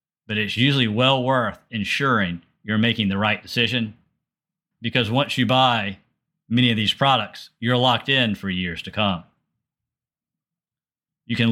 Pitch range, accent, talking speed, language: 110-135 Hz, American, 145 wpm, English